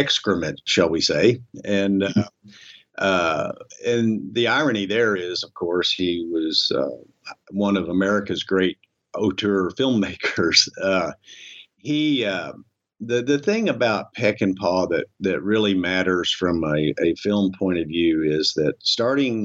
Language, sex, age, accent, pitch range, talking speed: English, male, 50-69, American, 90-110 Hz, 145 wpm